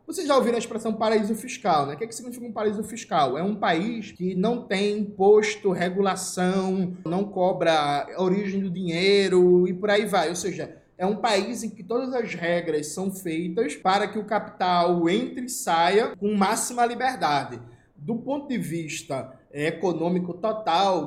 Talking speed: 175 wpm